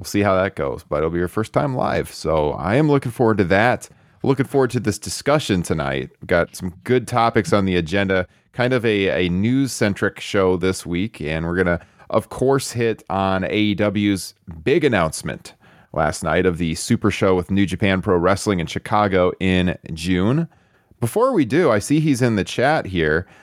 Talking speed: 195 wpm